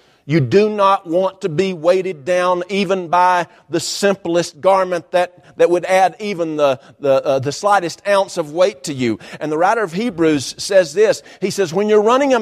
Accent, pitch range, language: American, 180-260 Hz, English